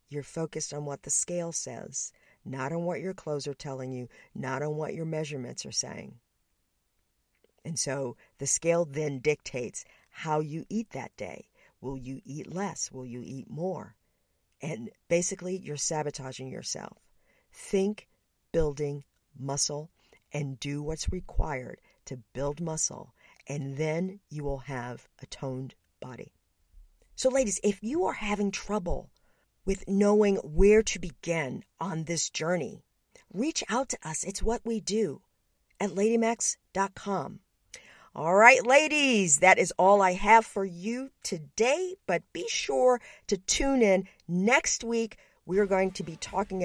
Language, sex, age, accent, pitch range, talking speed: English, female, 50-69, American, 145-210 Hz, 145 wpm